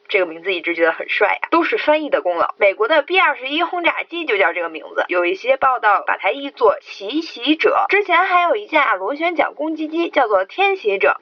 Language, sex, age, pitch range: Chinese, female, 20-39, 265-395 Hz